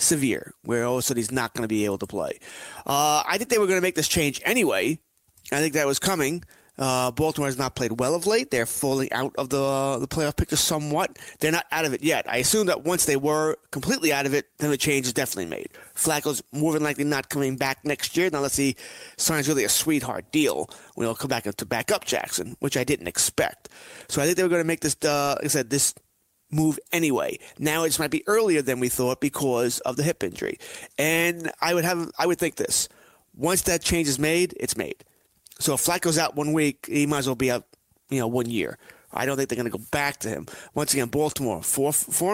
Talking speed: 245 wpm